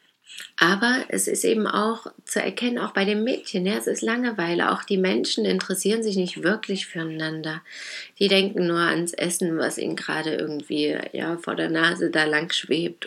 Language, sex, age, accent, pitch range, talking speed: German, female, 30-49, German, 165-210 Hz, 180 wpm